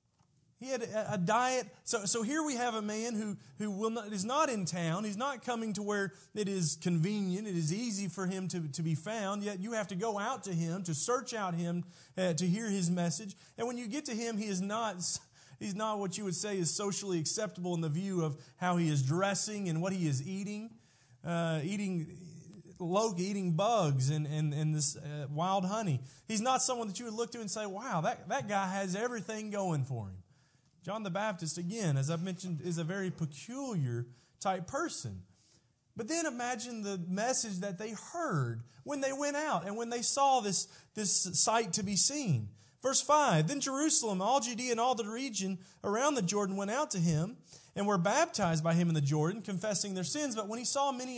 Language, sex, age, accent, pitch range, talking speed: English, male, 30-49, American, 165-230 Hz, 215 wpm